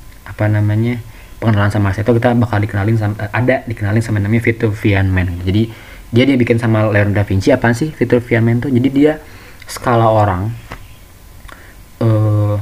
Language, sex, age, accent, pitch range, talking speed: Indonesian, male, 20-39, native, 100-115 Hz, 150 wpm